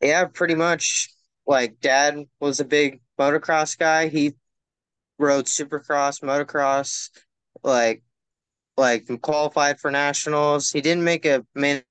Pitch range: 125-150 Hz